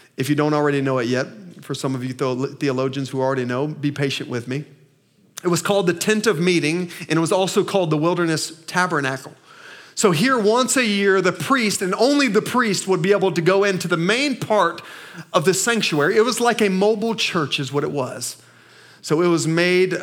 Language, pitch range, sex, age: English, 155-200 Hz, male, 40-59